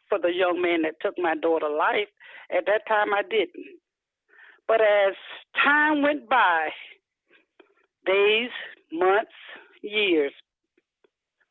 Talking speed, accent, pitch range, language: 115 wpm, American, 190-305 Hz, English